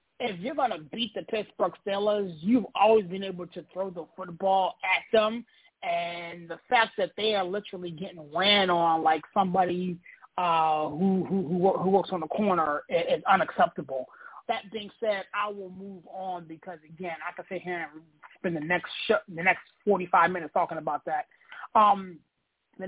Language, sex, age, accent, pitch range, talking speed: English, male, 30-49, American, 175-205 Hz, 175 wpm